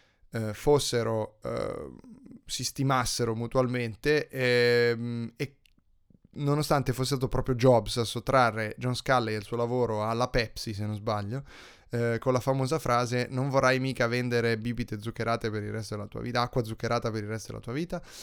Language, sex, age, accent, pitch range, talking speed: Italian, male, 20-39, native, 110-130 Hz, 170 wpm